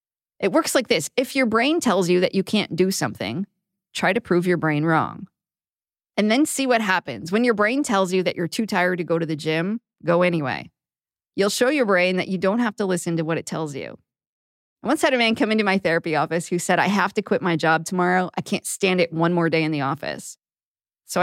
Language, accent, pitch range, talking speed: English, American, 170-220 Hz, 245 wpm